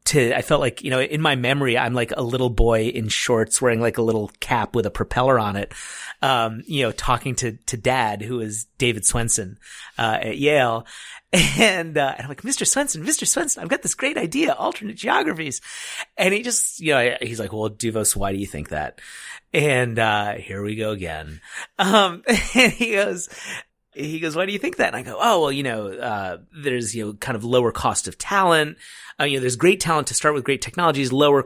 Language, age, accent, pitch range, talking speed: English, 30-49, American, 115-150 Hz, 220 wpm